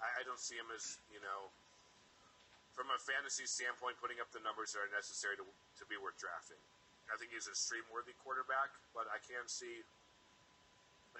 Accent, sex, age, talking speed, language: American, male, 40-59, 175 wpm, English